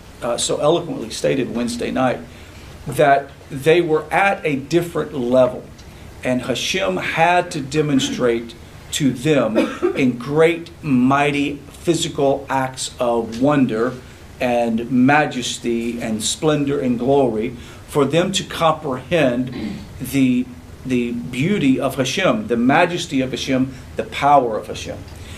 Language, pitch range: English, 120-170 Hz